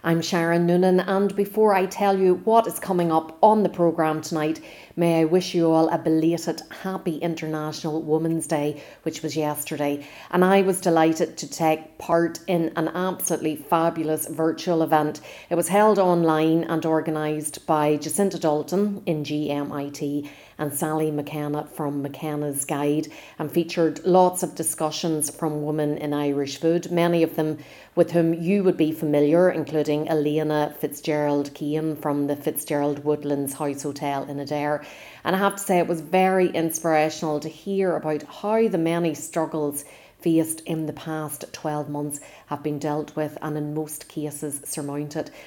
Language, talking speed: English, 160 wpm